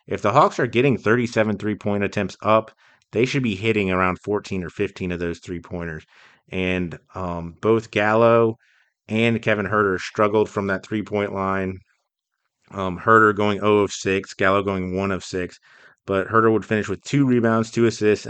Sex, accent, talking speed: male, American, 170 wpm